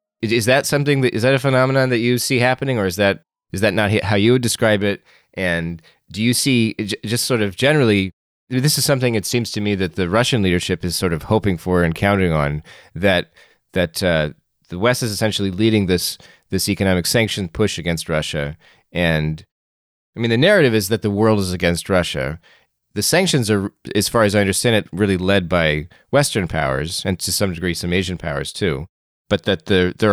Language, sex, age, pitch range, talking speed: English, male, 30-49, 90-115 Hz, 205 wpm